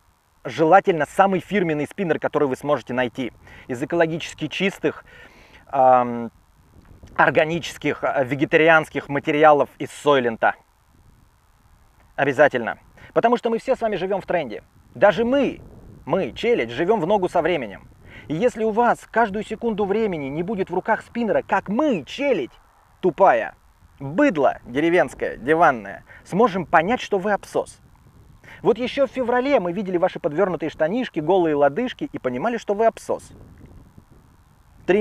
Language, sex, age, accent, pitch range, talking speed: Russian, male, 30-49, native, 145-210 Hz, 135 wpm